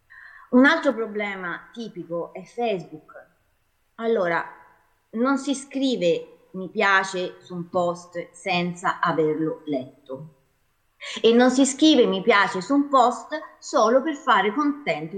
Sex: female